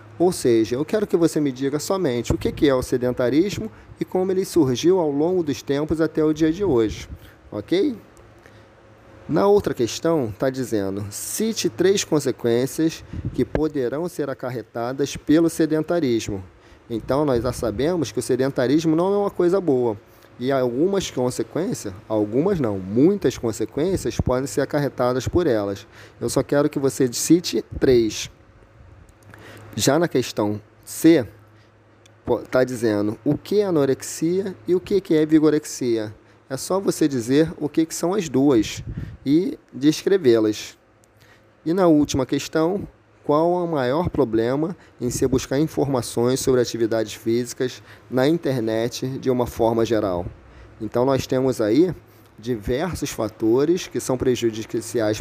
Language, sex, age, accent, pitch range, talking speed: Portuguese, male, 30-49, Brazilian, 110-150 Hz, 140 wpm